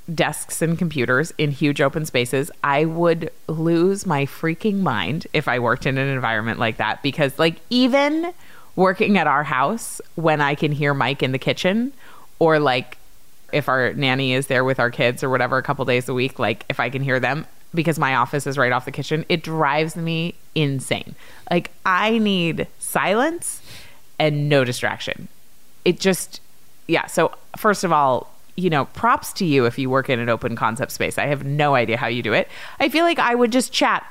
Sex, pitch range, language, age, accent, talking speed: female, 135-185 Hz, English, 20-39, American, 200 wpm